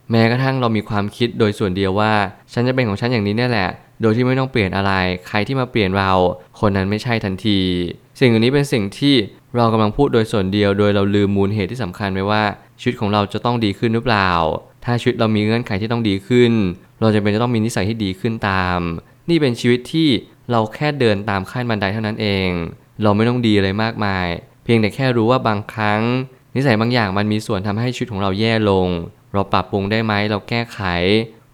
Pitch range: 100-120 Hz